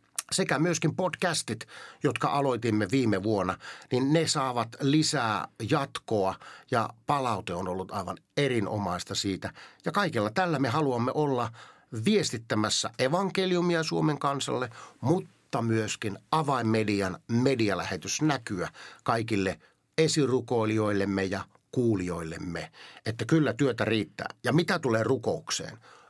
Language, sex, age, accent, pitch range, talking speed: Finnish, male, 50-69, native, 100-140 Hz, 105 wpm